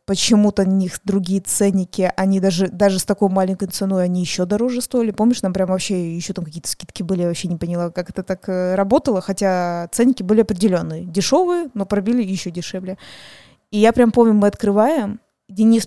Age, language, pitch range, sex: 20-39, Russian, 190-220 Hz, female